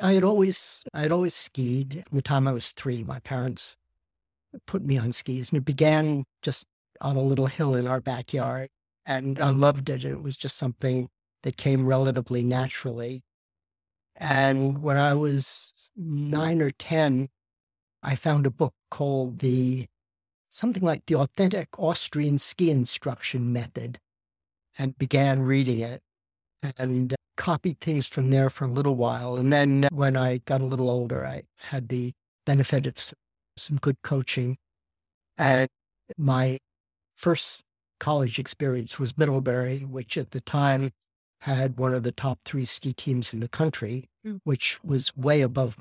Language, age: English, 50-69